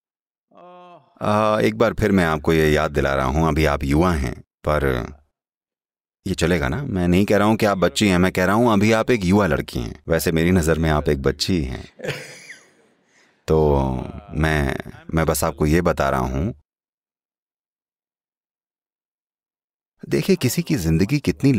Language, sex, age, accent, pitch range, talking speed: English, male, 30-49, Indian, 75-115 Hz, 165 wpm